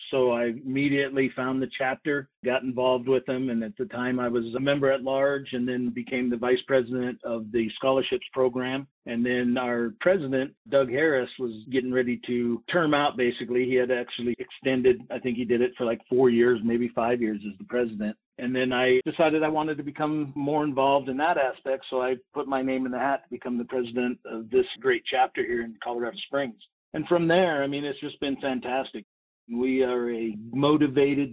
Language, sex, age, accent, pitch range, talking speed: English, male, 50-69, American, 125-140 Hz, 205 wpm